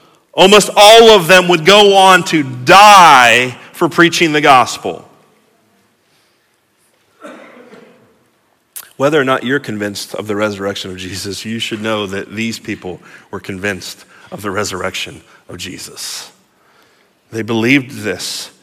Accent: American